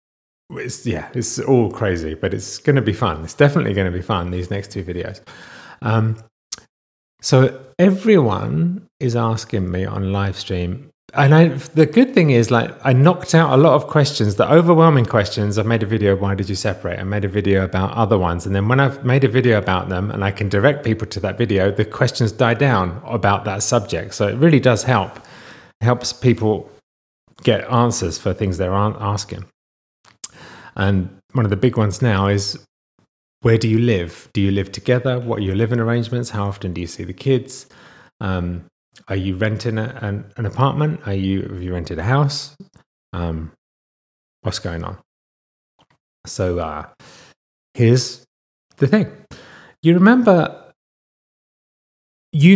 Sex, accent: male, British